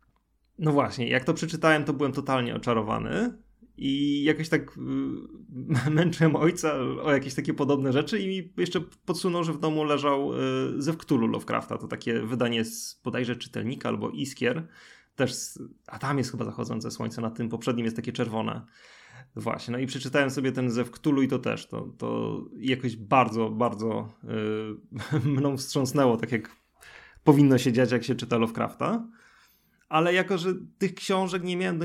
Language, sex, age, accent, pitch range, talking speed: Polish, male, 20-39, native, 120-155 Hz, 170 wpm